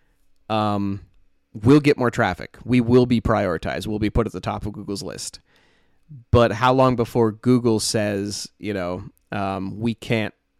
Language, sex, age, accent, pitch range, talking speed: English, male, 30-49, American, 100-120 Hz, 165 wpm